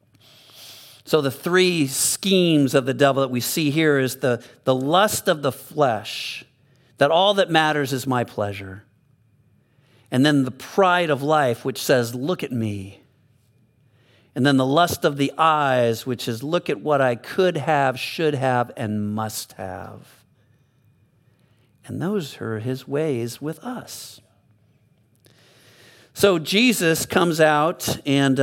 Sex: male